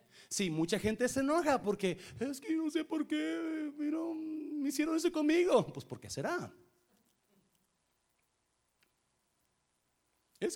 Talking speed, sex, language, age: 130 wpm, male, Spanish, 40-59